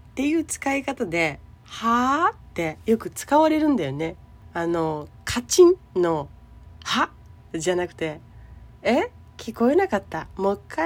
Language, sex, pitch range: Japanese, female, 165-275 Hz